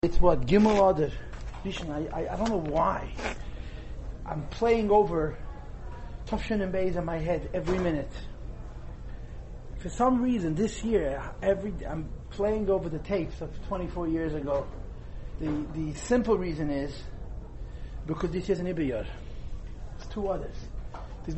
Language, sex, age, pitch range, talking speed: English, male, 40-59, 150-200 Hz, 135 wpm